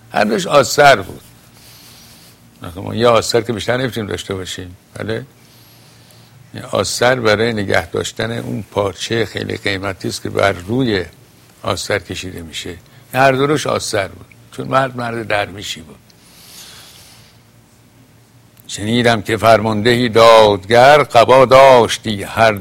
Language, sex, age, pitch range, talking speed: Persian, male, 60-79, 105-125 Hz, 115 wpm